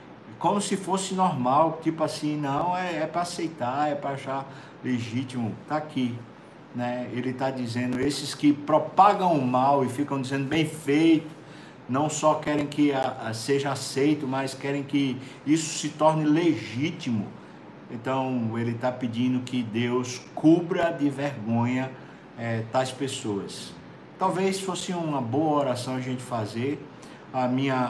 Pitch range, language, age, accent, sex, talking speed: 130-155 Hz, Portuguese, 50-69, Brazilian, male, 140 wpm